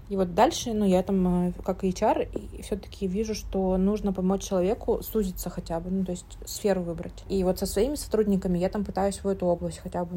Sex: female